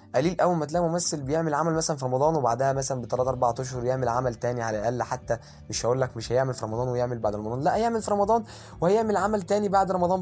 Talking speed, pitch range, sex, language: 235 wpm, 125-175 Hz, male, Arabic